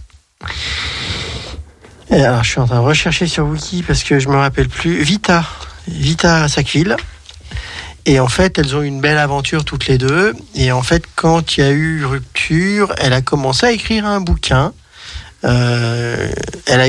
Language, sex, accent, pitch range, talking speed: French, male, French, 125-170 Hz, 180 wpm